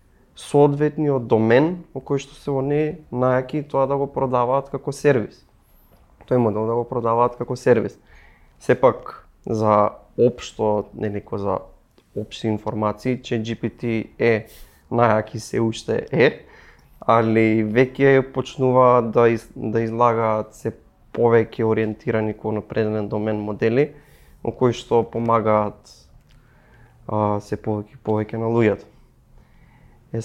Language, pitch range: English, 110-130 Hz